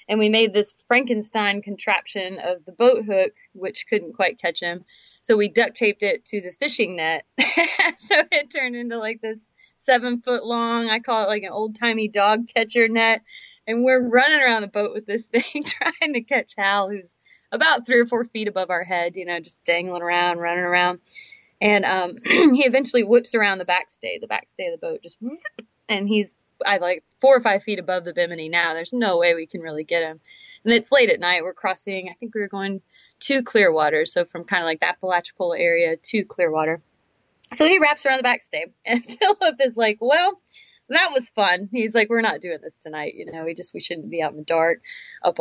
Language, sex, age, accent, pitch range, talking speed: English, female, 20-39, American, 180-245 Hz, 215 wpm